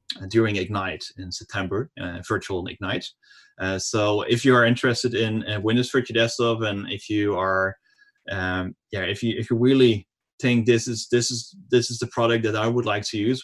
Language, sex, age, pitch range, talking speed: English, male, 30-49, 95-115 Hz, 200 wpm